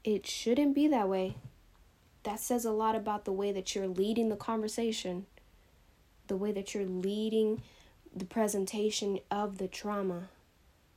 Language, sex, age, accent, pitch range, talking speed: English, female, 10-29, American, 185-220 Hz, 150 wpm